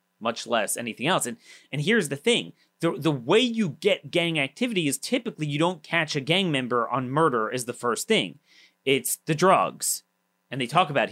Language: English